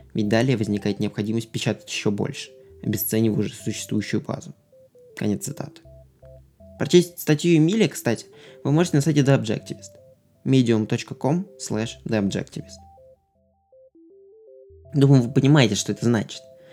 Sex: male